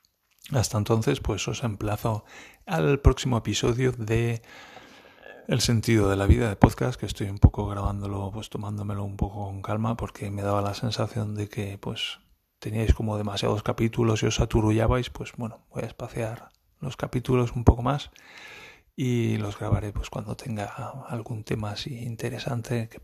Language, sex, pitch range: Spanish, male, 105-125 Hz